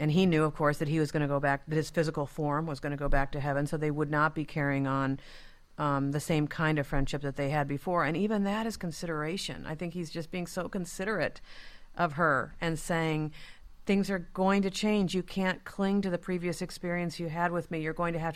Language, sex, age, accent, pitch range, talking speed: English, female, 50-69, American, 145-175 Hz, 250 wpm